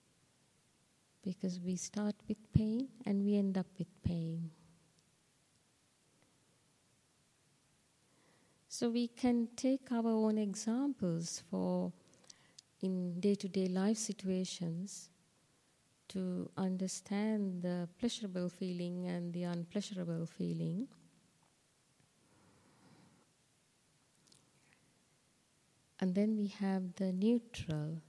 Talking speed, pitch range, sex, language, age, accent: 80 wpm, 175-205 Hz, female, English, 30-49, Indian